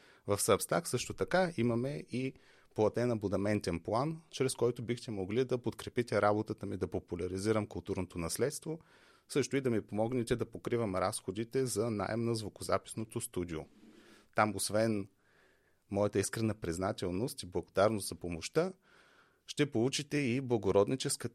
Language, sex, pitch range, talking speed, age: Bulgarian, male, 95-120 Hz, 130 wpm, 30-49